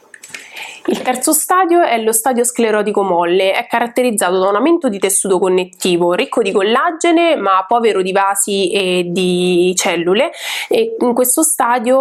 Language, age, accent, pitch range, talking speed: Italian, 20-39, native, 190-250 Hz, 150 wpm